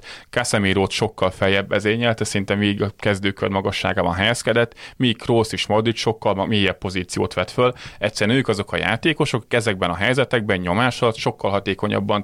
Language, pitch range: Hungarian, 95-110 Hz